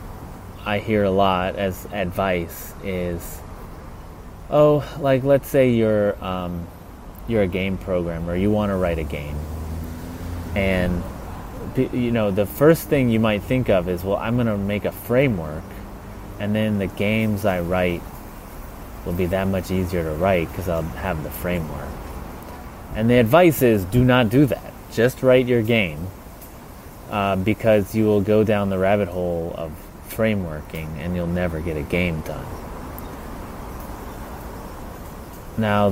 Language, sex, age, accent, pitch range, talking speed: English, male, 30-49, American, 85-105 Hz, 150 wpm